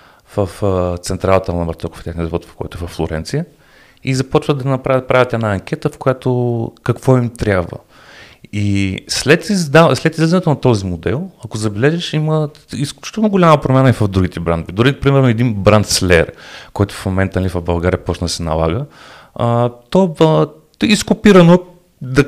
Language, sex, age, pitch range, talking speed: Bulgarian, male, 30-49, 90-130 Hz, 155 wpm